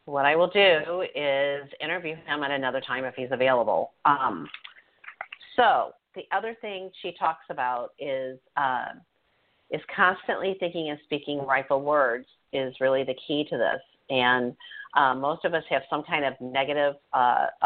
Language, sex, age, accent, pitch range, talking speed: English, female, 50-69, American, 130-180 Hz, 160 wpm